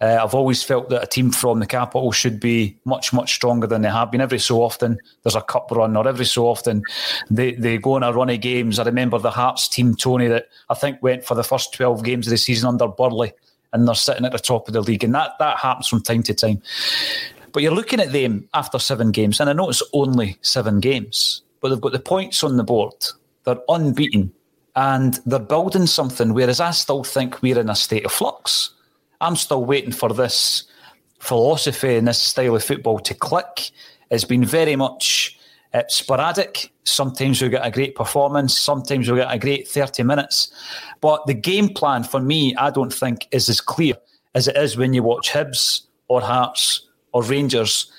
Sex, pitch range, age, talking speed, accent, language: male, 115-135 Hz, 30-49, 210 wpm, British, English